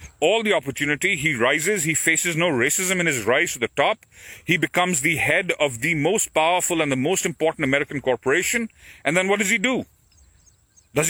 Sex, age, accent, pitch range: male, 40-59, Indian, 145-195 Hz